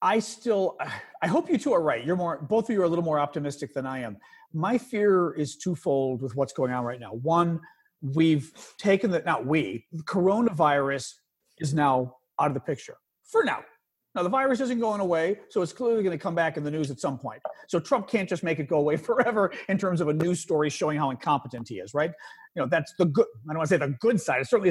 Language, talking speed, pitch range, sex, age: English, 245 wpm, 150-215 Hz, male, 40-59